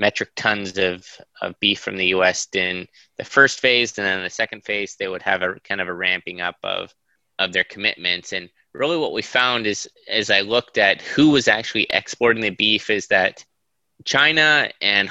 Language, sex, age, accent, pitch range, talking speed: English, male, 20-39, American, 95-115 Hz, 205 wpm